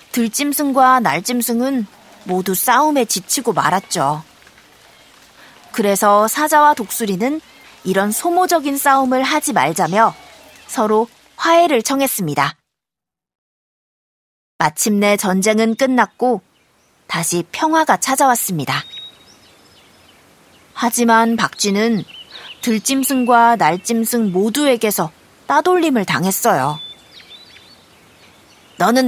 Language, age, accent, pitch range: Korean, 30-49, native, 210-280 Hz